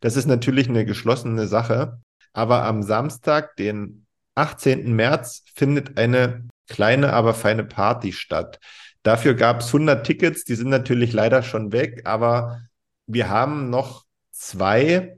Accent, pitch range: German, 115-140 Hz